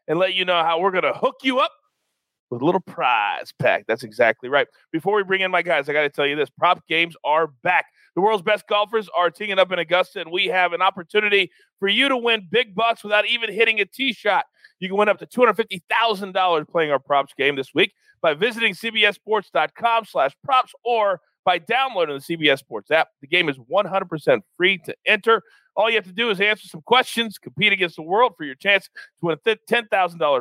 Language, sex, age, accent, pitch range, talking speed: English, male, 40-59, American, 165-230 Hz, 220 wpm